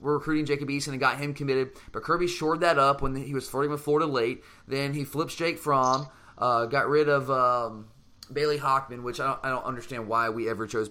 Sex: male